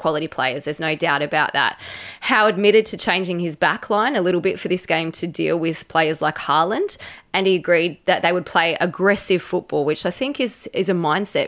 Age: 20-39